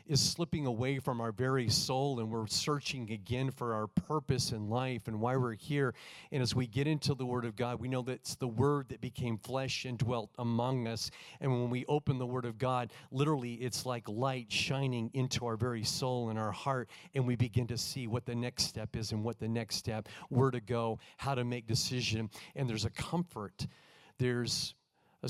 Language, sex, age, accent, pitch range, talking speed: English, male, 50-69, American, 115-135 Hz, 215 wpm